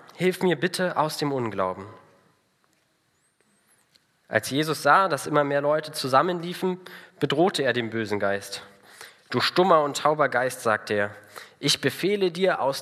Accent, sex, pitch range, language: German, male, 115-155 Hz, German